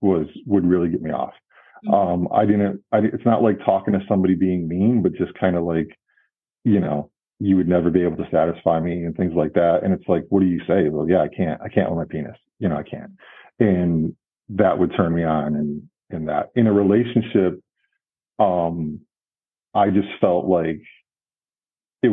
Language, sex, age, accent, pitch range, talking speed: English, male, 40-59, American, 85-100 Hz, 205 wpm